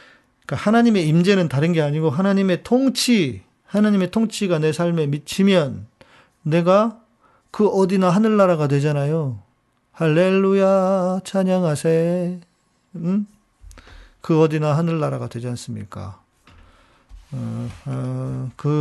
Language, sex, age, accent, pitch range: Korean, male, 40-59, native, 130-180 Hz